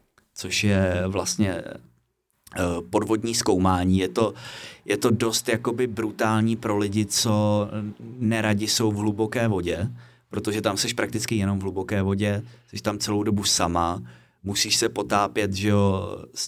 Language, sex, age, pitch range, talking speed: Czech, male, 30-49, 90-110 Hz, 140 wpm